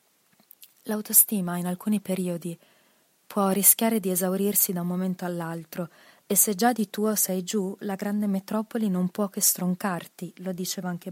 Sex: female